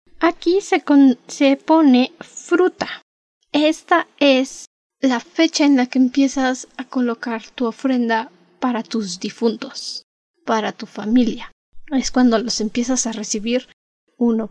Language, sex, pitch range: Spanish, female, 235-295 Hz